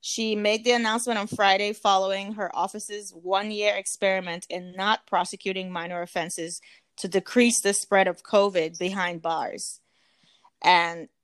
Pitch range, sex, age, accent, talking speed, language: 185-215 Hz, female, 20-39, American, 135 wpm, English